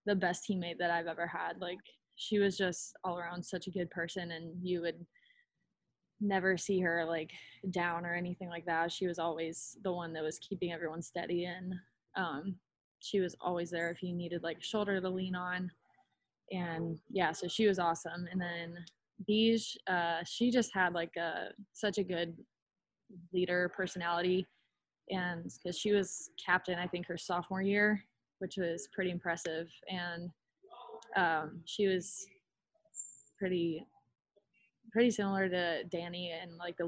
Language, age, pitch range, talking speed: English, 20-39, 170-195 Hz, 160 wpm